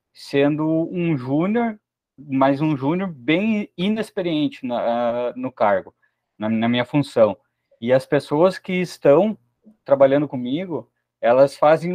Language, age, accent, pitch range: Portuguese, 20-39, Brazilian, 125-170 Hz